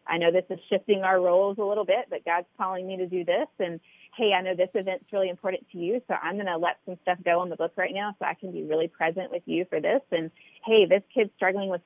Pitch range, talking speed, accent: 165-210 Hz, 285 wpm, American